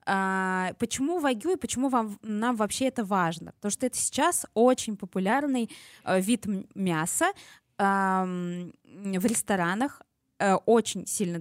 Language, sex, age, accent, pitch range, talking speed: Russian, female, 20-39, native, 190-245 Hz, 105 wpm